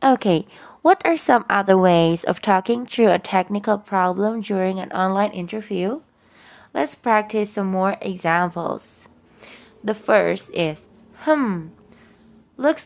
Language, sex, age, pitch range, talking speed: English, female, 20-39, 185-230 Hz, 120 wpm